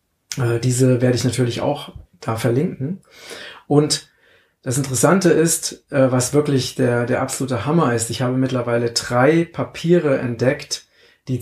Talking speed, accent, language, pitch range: 130 wpm, German, German, 125-150 Hz